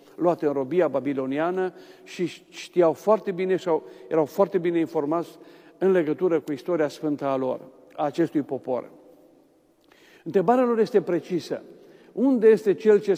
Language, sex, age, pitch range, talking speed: Romanian, male, 50-69, 155-205 Hz, 140 wpm